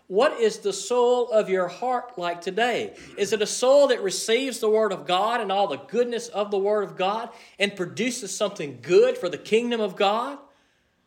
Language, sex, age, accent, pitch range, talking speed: English, male, 40-59, American, 155-235 Hz, 200 wpm